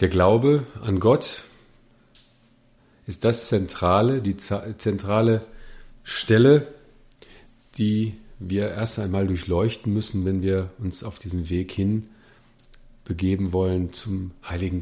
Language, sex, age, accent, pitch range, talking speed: German, male, 40-59, German, 95-120 Hz, 110 wpm